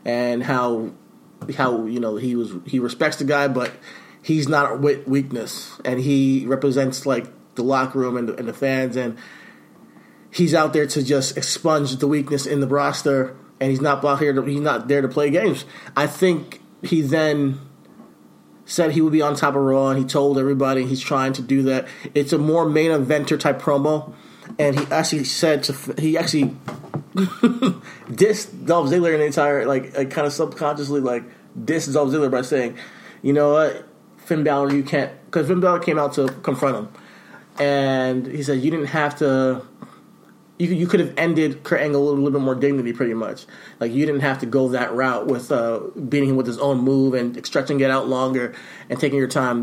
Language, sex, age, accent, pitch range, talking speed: English, male, 30-49, American, 130-150 Hz, 200 wpm